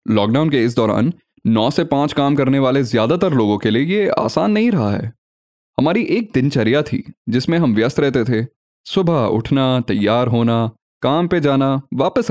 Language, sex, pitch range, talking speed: English, male, 120-180 Hz, 175 wpm